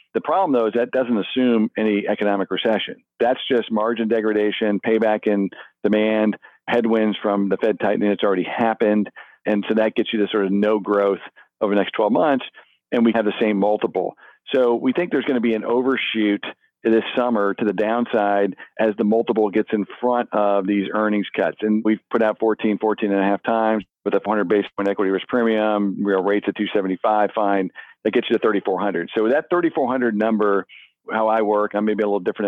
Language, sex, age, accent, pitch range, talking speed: English, male, 40-59, American, 100-115 Hz, 205 wpm